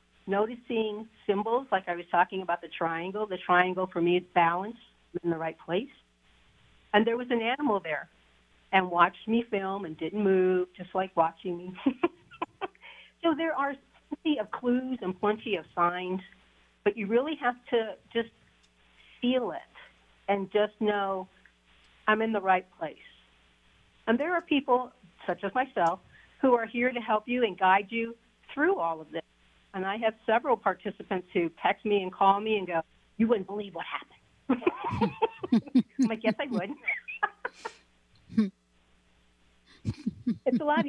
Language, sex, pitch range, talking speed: English, female, 175-240 Hz, 160 wpm